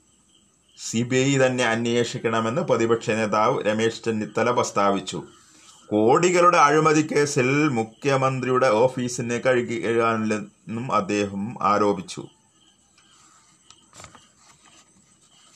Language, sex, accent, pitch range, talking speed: Malayalam, male, native, 115-140 Hz, 75 wpm